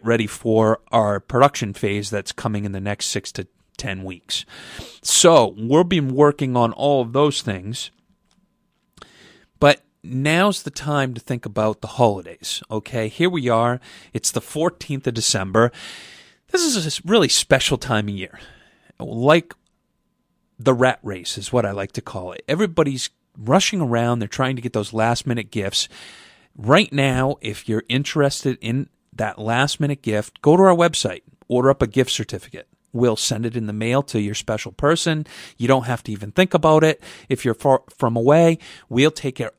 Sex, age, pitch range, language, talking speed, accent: male, 30-49, 110-145 Hz, English, 175 wpm, American